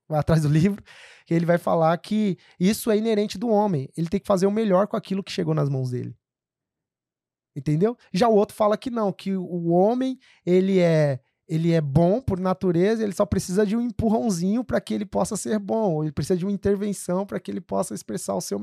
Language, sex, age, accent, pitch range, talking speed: Portuguese, male, 20-39, Brazilian, 160-210 Hz, 215 wpm